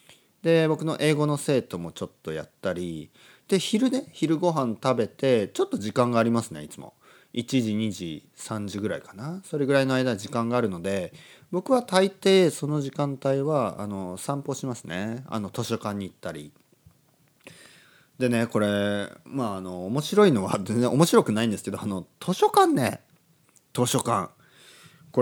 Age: 40-59